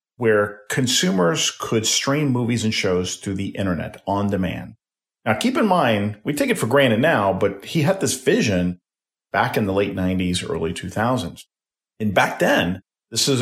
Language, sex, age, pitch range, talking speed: English, male, 40-59, 90-110 Hz, 175 wpm